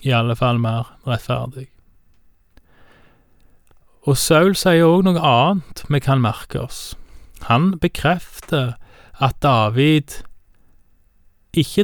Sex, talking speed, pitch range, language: male, 95 wpm, 115-140 Hz, Danish